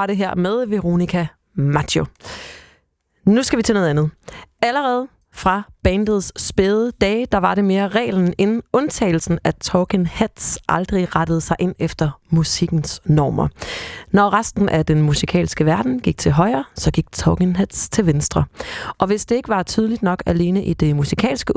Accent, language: native, Danish